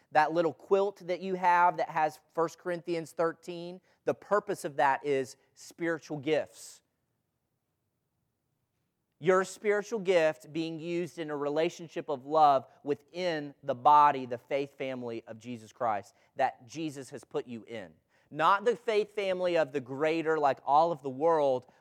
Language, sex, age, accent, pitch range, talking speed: English, male, 30-49, American, 135-175 Hz, 150 wpm